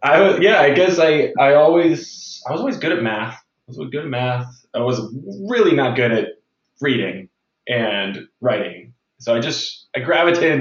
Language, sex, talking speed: English, male, 180 wpm